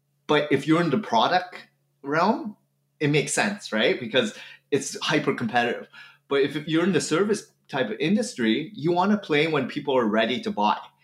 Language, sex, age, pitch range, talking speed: English, male, 30-49, 130-175 Hz, 185 wpm